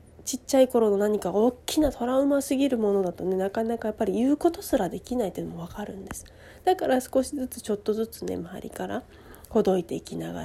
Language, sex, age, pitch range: Japanese, female, 40-59, 195-255 Hz